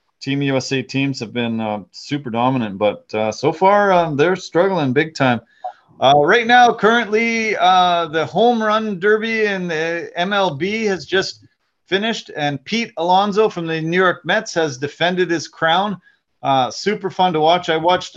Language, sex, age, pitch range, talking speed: English, male, 30-49, 140-185 Hz, 170 wpm